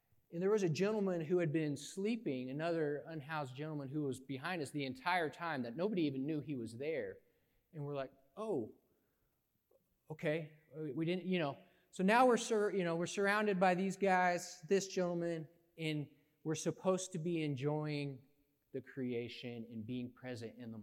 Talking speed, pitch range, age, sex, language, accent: 175 wpm, 130-180 Hz, 30-49, male, English, American